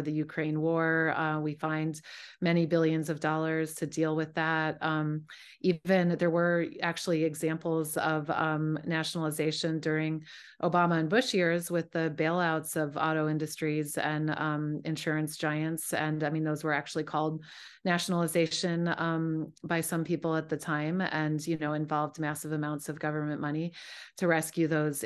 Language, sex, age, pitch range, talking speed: English, female, 30-49, 150-165 Hz, 155 wpm